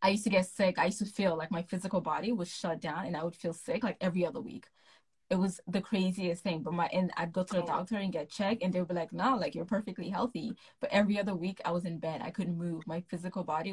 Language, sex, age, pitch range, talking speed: English, female, 20-39, 175-220 Hz, 285 wpm